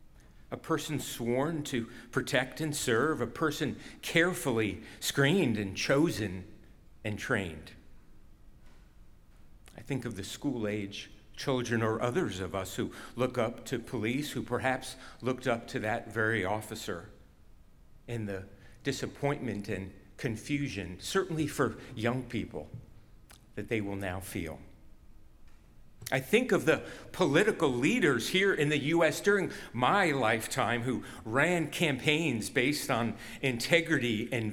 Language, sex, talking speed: English, male, 125 wpm